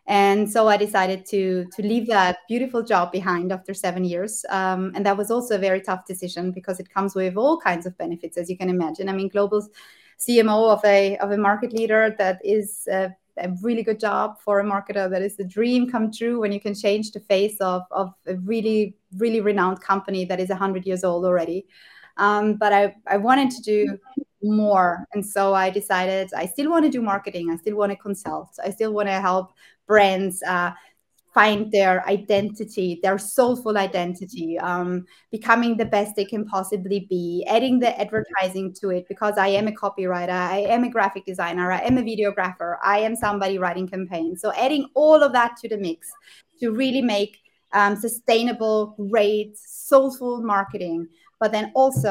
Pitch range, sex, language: 185-220 Hz, female, English